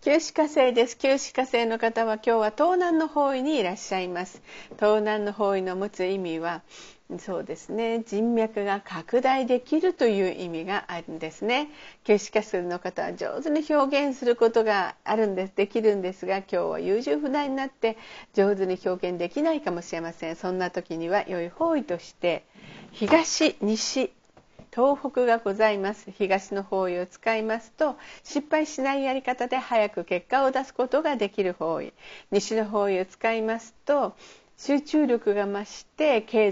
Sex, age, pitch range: female, 50-69, 195-275 Hz